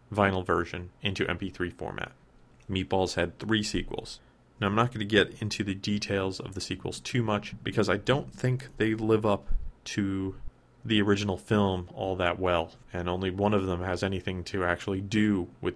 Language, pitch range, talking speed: English, 90-105 Hz, 185 wpm